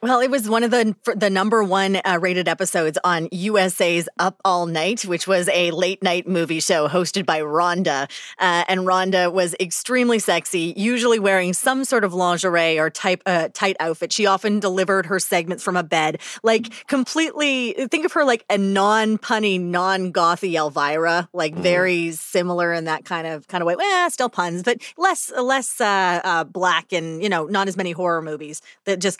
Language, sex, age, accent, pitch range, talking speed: English, female, 30-49, American, 170-200 Hz, 195 wpm